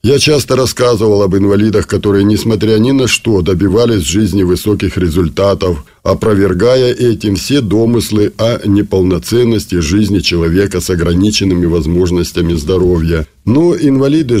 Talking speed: 115 wpm